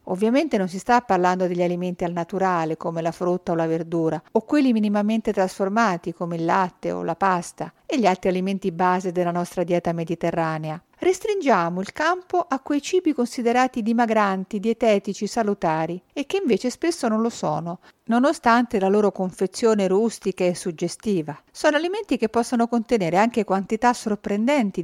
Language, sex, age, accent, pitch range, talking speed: Italian, female, 50-69, native, 180-240 Hz, 160 wpm